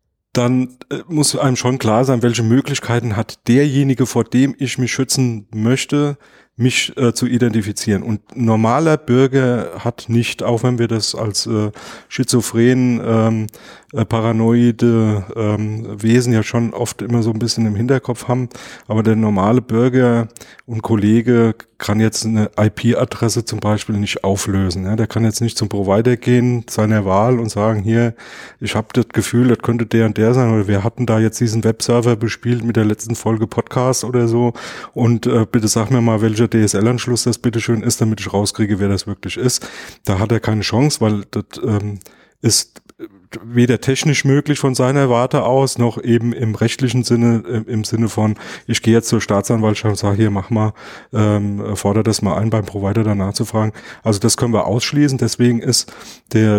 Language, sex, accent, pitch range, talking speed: German, male, German, 110-120 Hz, 180 wpm